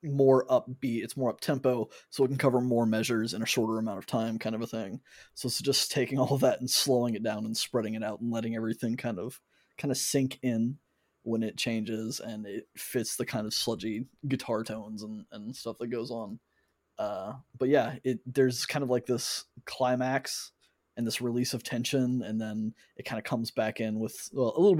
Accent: American